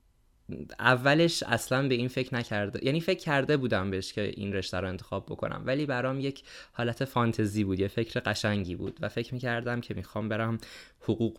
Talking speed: 180 wpm